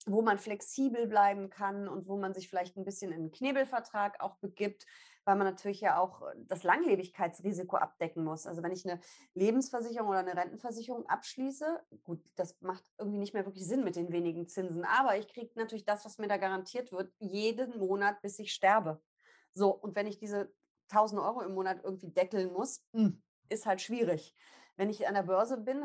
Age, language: 30-49, German